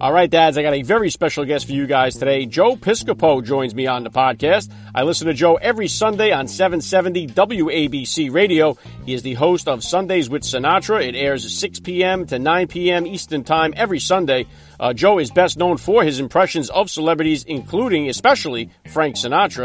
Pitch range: 140-175 Hz